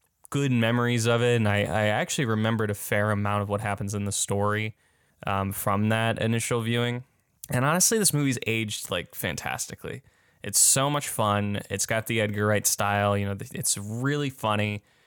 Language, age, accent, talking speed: English, 10-29, American, 180 wpm